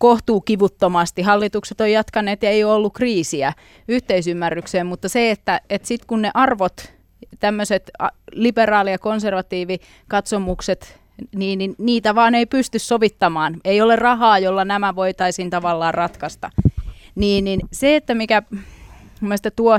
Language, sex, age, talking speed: Finnish, female, 30-49, 135 wpm